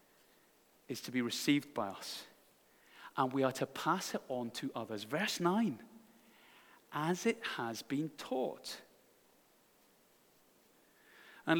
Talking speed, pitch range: 120 wpm, 145-215 Hz